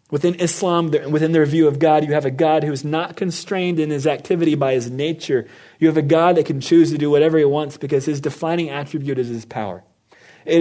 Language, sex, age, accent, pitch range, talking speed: English, male, 30-49, American, 140-165 Hz, 230 wpm